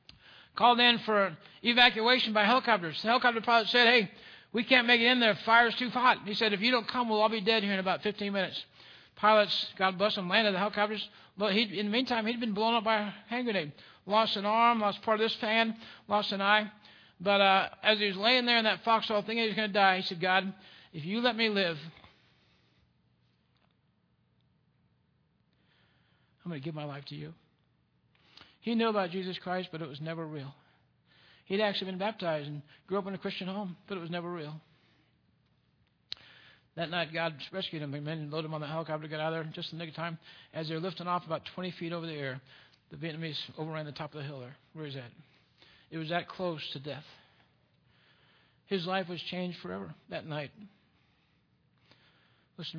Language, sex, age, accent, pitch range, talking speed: English, male, 60-79, American, 160-215 Hz, 205 wpm